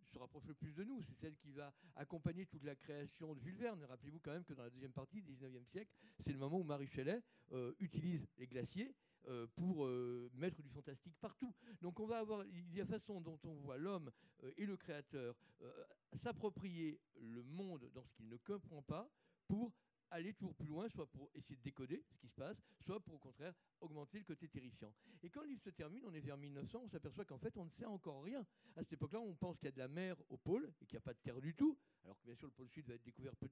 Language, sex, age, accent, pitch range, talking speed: French, male, 50-69, French, 145-205 Hz, 260 wpm